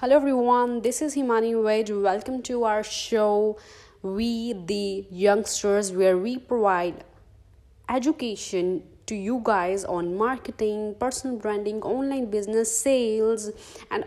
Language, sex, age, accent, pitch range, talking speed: Hindi, female, 20-39, native, 190-235 Hz, 120 wpm